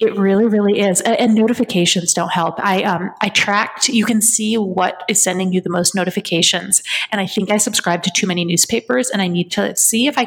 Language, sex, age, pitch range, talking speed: English, female, 30-49, 185-235 Hz, 220 wpm